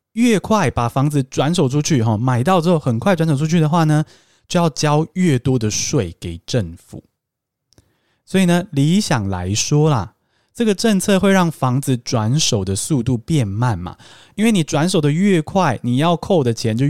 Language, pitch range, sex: Chinese, 120-180 Hz, male